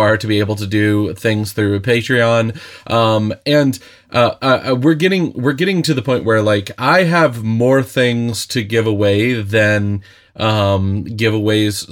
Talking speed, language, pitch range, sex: 155 wpm, English, 105-125 Hz, male